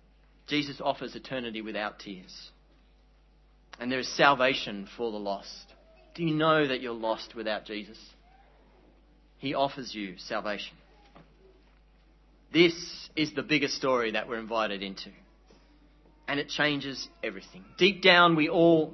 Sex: male